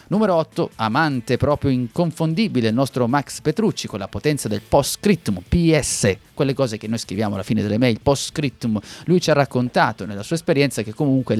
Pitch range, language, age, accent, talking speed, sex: 110-150 Hz, Italian, 30-49, native, 180 wpm, male